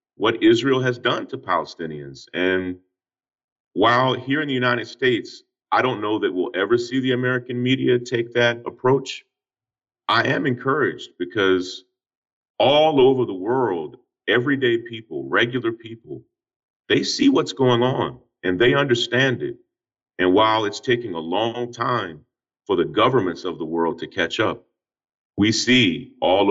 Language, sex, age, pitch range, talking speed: Arabic, male, 40-59, 115-145 Hz, 150 wpm